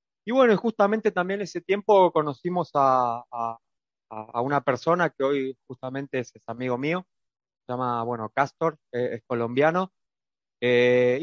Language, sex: Spanish, male